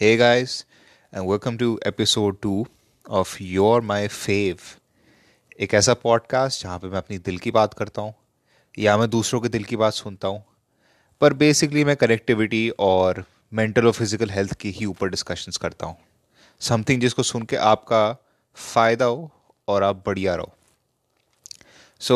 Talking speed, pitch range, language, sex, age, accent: 160 wpm, 105-130 Hz, Hindi, male, 20-39, native